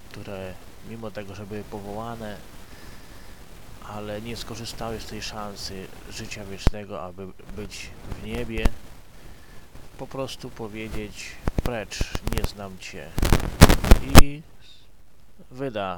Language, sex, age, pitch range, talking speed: Polish, male, 20-39, 95-115 Hz, 100 wpm